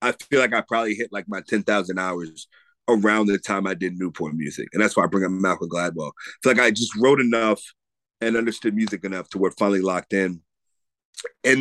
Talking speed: 220 wpm